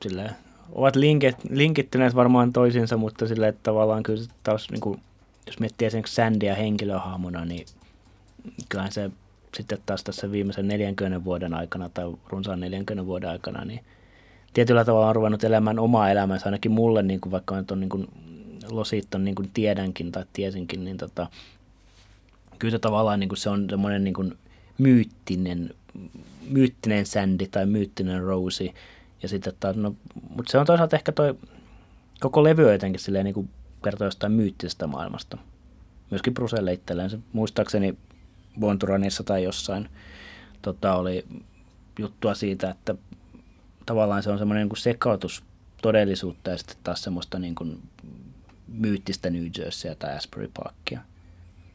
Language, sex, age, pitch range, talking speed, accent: Finnish, male, 30-49, 90-110 Hz, 135 wpm, native